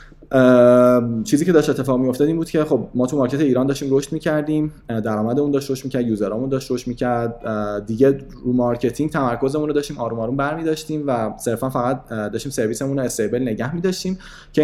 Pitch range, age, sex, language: 110-135 Hz, 20-39, male, Persian